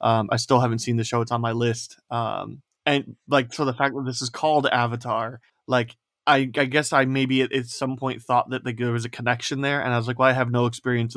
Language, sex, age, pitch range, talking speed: English, male, 20-39, 120-140 Hz, 265 wpm